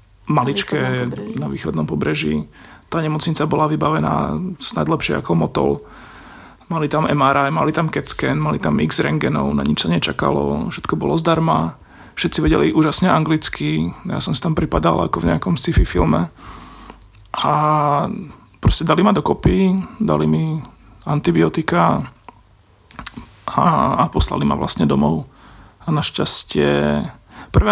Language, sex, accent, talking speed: Czech, male, native, 130 wpm